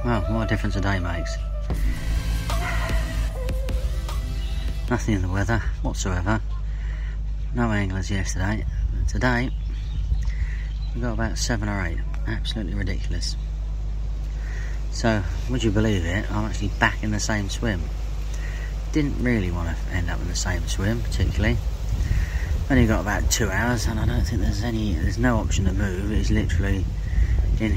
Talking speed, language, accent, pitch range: 145 wpm, English, British, 80-105 Hz